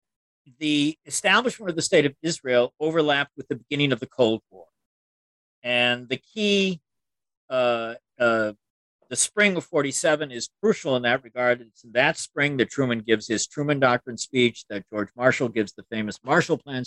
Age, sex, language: 50-69, male, English